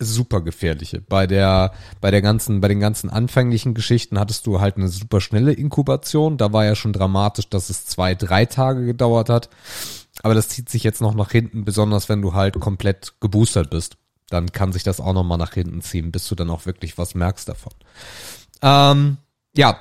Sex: male